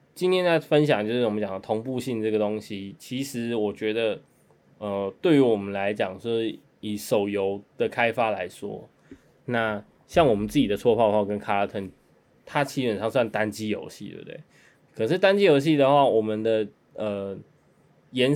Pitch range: 105-130 Hz